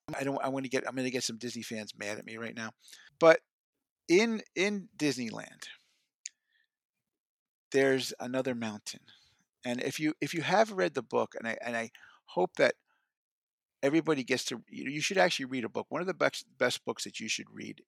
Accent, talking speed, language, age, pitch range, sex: American, 200 wpm, English, 50-69, 115-155 Hz, male